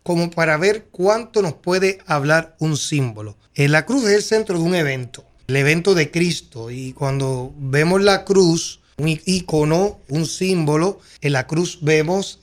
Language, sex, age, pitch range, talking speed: Spanish, male, 30-49, 145-190 Hz, 170 wpm